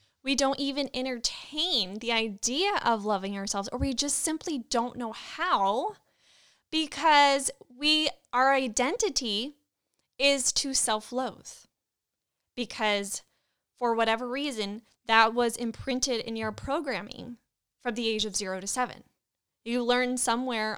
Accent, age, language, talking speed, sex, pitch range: American, 10-29, English, 125 wpm, female, 210-255 Hz